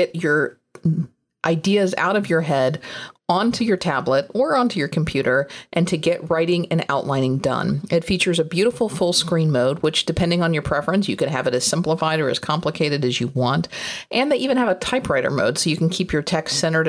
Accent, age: American, 50-69